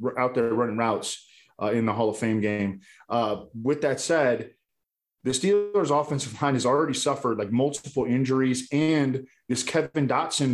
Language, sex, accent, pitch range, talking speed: English, male, American, 115-135 Hz, 165 wpm